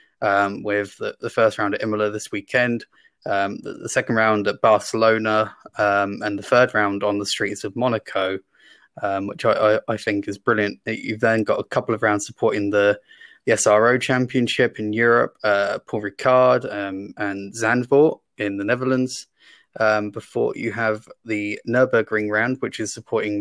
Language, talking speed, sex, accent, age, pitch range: English, 175 wpm, male, British, 20-39, 105-120 Hz